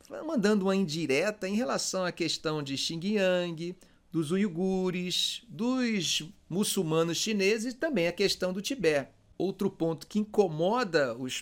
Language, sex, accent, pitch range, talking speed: Portuguese, male, Brazilian, 150-225 Hz, 130 wpm